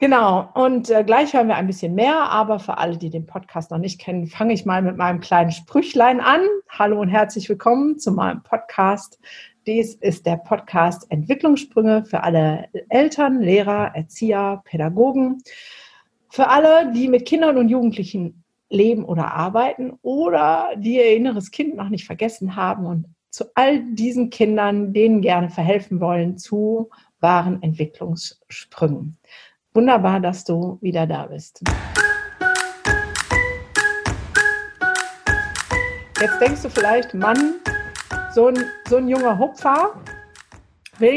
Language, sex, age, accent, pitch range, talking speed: German, female, 50-69, German, 180-255 Hz, 135 wpm